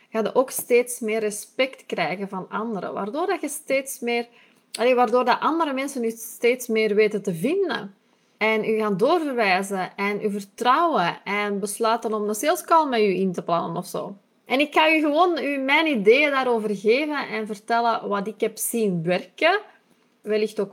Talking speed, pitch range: 180 wpm, 205-250 Hz